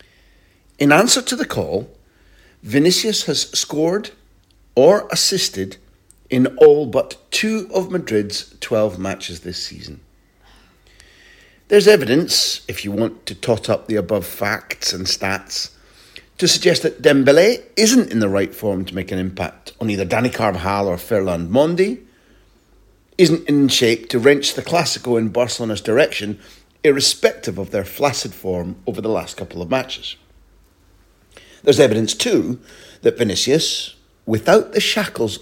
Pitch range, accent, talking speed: 95-140 Hz, British, 140 wpm